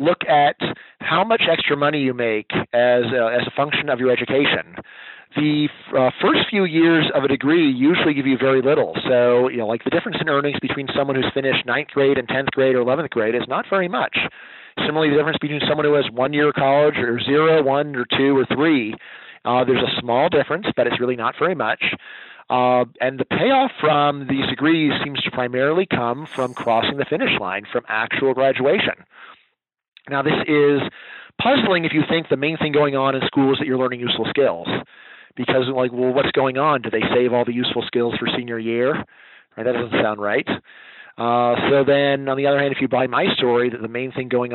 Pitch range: 125-145 Hz